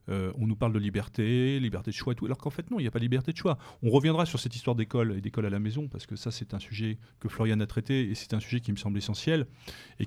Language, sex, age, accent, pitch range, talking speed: French, male, 40-59, French, 115-135 Hz, 310 wpm